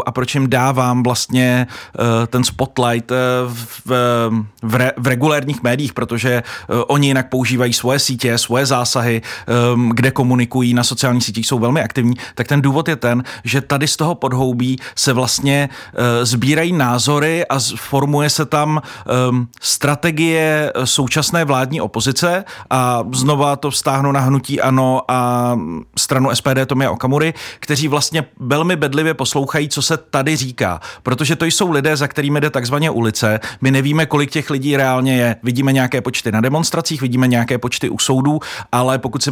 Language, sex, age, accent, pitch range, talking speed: Czech, male, 30-49, native, 125-145 Hz, 165 wpm